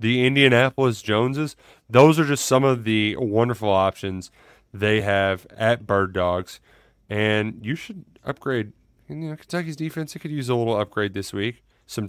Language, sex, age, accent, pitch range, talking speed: English, male, 30-49, American, 105-140 Hz, 165 wpm